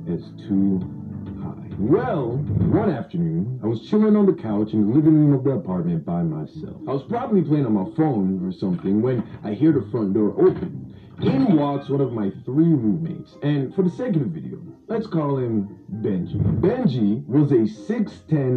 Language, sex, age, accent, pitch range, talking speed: English, male, 40-59, American, 130-185 Hz, 185 wpm